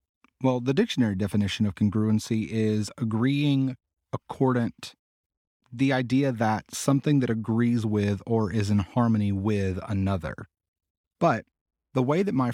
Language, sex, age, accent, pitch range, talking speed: English, male, 30-49, American, 105-125 Hz, 130 wpm